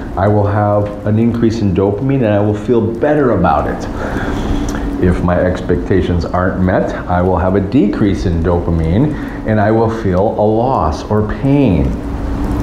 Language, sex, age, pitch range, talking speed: English, male, 40-59, 90-110 Hz, 160 wpm